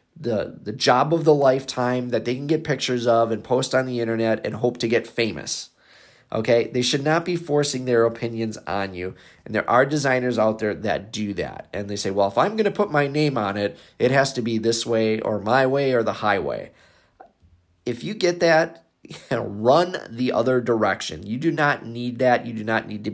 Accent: American